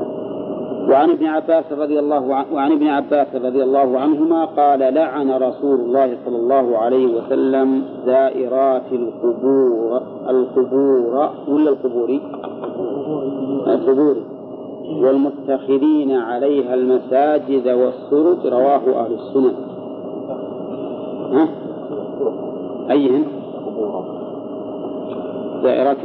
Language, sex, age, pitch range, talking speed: Arabic, male, 40-59, 130-150 Hz, 75 wpm